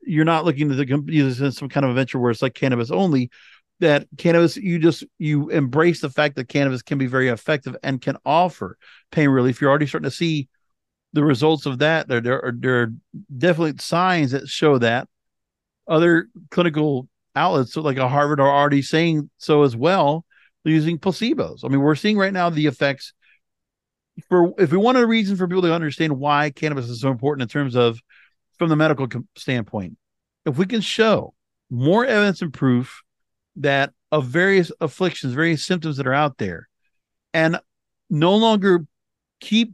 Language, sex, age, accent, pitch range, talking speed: English, male, 50-69, American, 135-170 Hz, 185 wpm